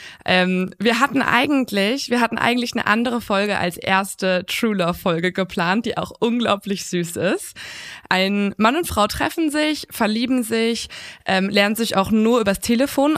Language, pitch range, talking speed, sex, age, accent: German, 185-230 Hz, 165 wpm, female, 20-39, German